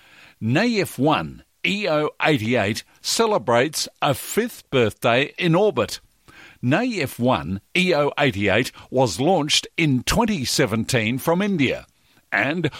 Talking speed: 90 wpm